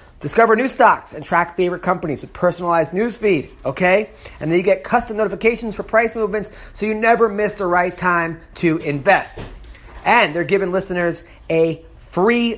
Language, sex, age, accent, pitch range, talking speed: English, male, 30-49, American, 170-225 Hz, 165 wpm